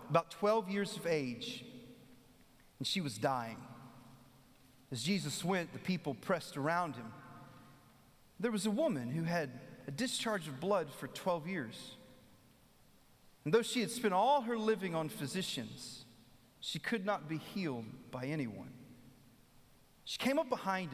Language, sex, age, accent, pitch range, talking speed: English, male, 40-59, American, 125-200 Hz, 145 wpm